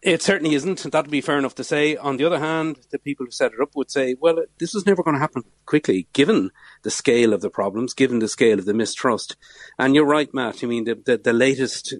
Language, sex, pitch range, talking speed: English, male, 115-150 Hz, 260 wpm